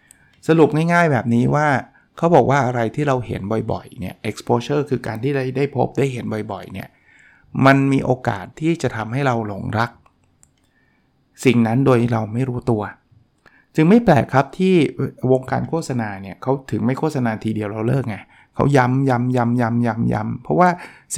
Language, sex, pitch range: Thai, male, 115-140 Hz